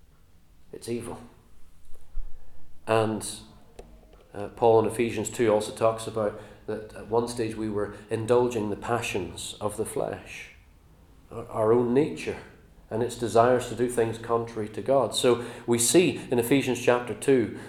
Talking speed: 145 wpm